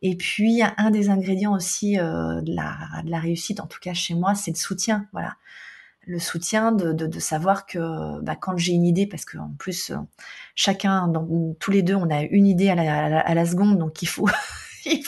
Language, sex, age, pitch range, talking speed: French, female, 30-49, 165-195 Hz, 225 wpm